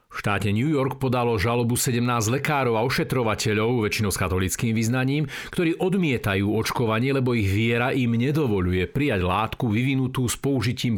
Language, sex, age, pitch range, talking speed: Slovak, male, 50-69, 100-130 Hz, 150 wpm